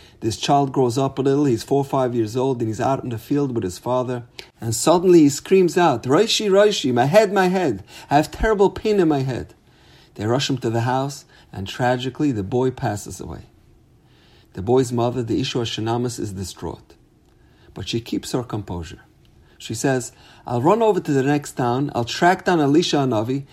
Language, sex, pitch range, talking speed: English, male, 105-145 Hz, 200 wpm